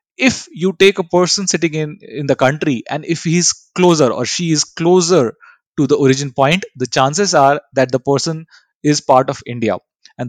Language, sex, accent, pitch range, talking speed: English, male, Indian, 135-180 Hz, 200 wpm